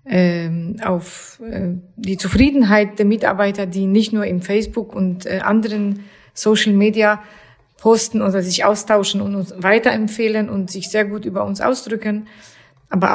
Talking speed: 130 wpm